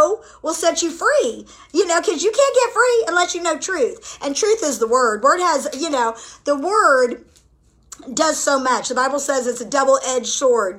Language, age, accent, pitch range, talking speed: English, 50-69, American, 270-355 Hz, 205 wpm